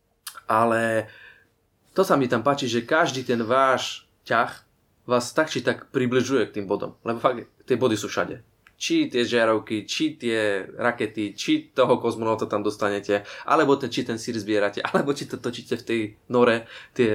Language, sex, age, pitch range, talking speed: Slovak, male, 20-39, 110-135 Hz, 175 wpm